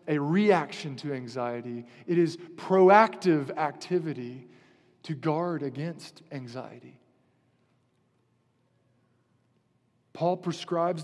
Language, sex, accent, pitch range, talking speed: English, male, American, 150-195 Hz, 75 wpm